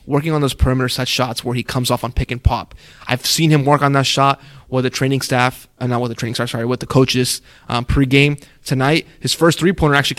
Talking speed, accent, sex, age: 245 wpm, American, male, 20-39